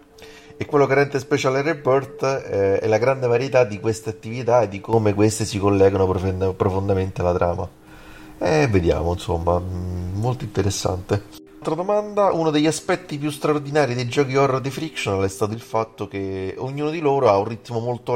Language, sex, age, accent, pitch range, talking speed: Italian, male, 30-49, native, 100-125 Hz, 170 wpm